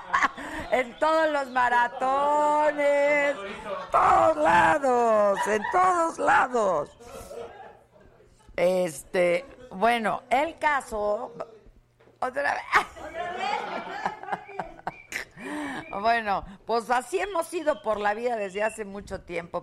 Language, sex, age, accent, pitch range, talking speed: Spanish, female, 50-69, Mexican, 160-245 Hz, 85 wpm